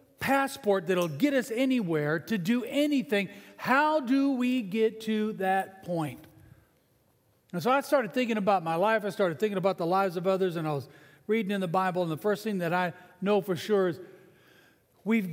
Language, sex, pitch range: English, male, 175-235 Hz